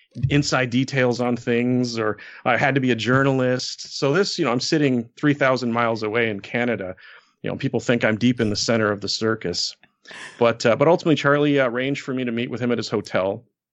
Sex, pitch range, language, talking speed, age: male, 110-135 Hz, English, 220 wpm, 30-49